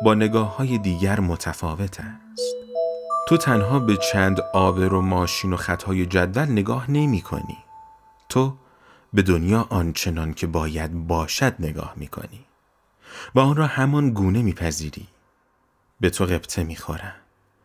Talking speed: 135 wpm